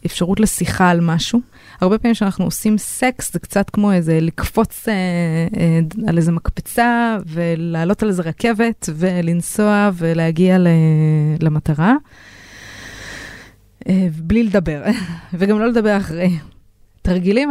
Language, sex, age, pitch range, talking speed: Hebrew, female, 20-39, 160-205 Hz, 120 wpm